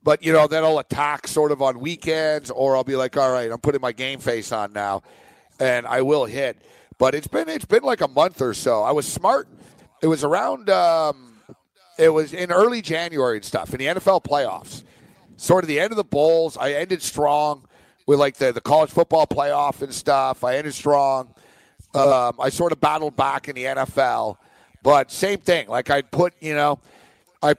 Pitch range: 130-165 Hz